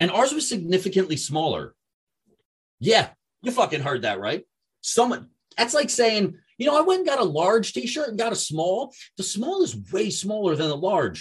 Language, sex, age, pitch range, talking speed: English, male, 30-49, 160-235 Hz, 195 wpm